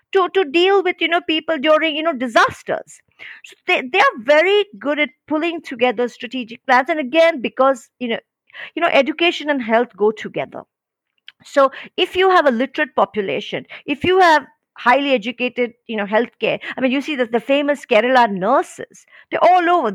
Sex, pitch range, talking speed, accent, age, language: female, 220-300 Hz, 185 wpm, native, 50-69, Hindi